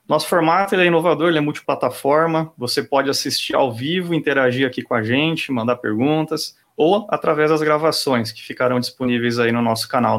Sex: male